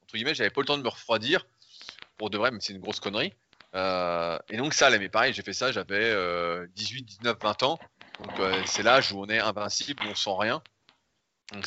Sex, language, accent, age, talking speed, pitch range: male, French, French, 30-49, 225 wpm, 105-140 Hz